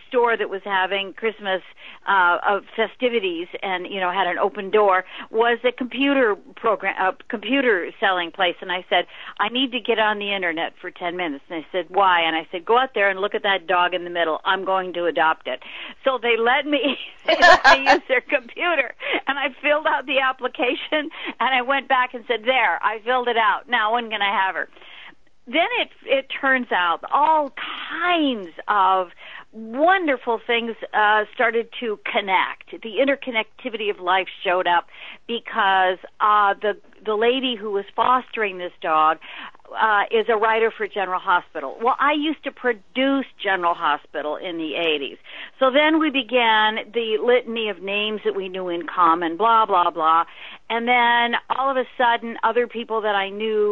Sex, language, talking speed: female, English, 185 wpm